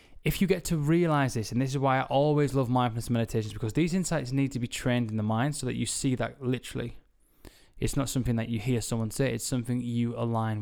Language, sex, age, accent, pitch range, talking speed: English, male, 10-29, British, 115-140 Hz, 245 wpm